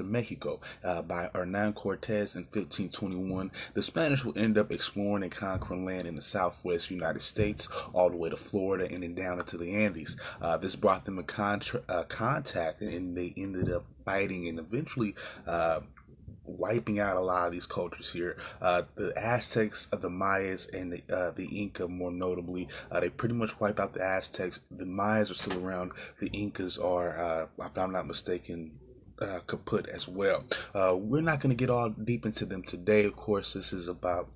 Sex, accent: male, American